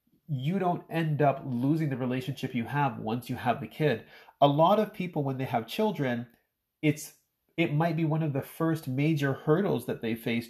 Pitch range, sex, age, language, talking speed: 115-150 Hz, male, 30-49, English, 200 wpm